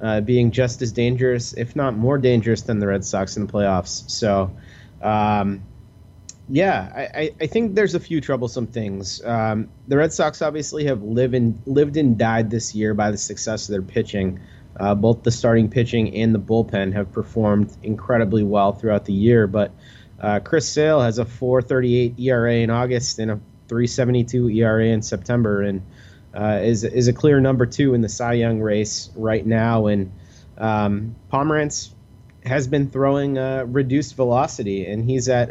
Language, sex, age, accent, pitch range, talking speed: English, male, 30-49, American, 105-125 Hz, 175 wpm